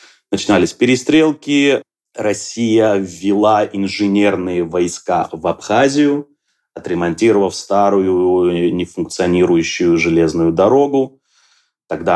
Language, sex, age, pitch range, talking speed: Russian, male, 30-49, 85-135 Hz, 70 wpm